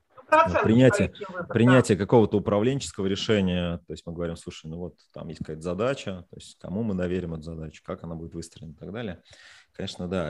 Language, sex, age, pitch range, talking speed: Russian, male, 30-49, 85-105 Hz, 185 wpm